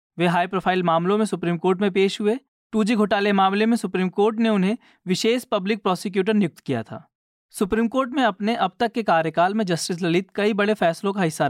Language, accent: Hindi, native